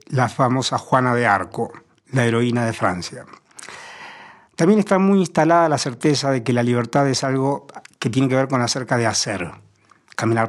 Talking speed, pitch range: 170 wpm, 120-150 Hz